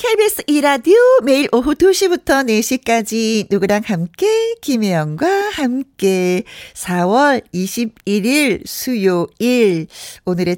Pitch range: 190-285 Hz